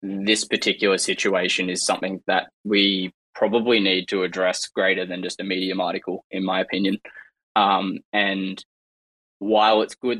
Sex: male